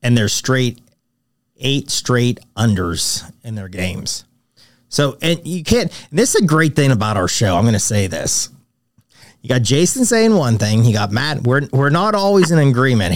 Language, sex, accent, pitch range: English, male, American, 110-145 Hz